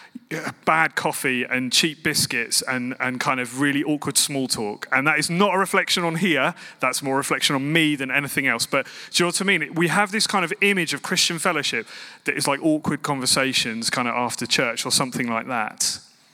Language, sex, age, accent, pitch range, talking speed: English, male, 30-49, British, 135-180 Hz, 215 wpm